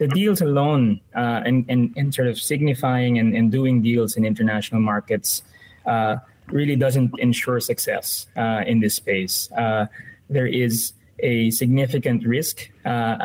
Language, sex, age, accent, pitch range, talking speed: English, male, 20-39, Filipino, 105-125 Hz, 145 wpm